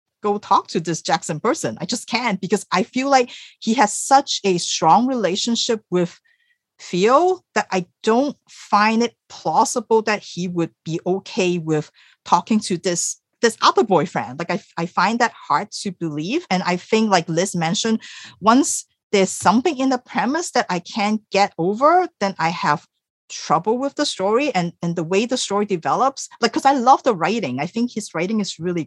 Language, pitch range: English, 180-235 Hz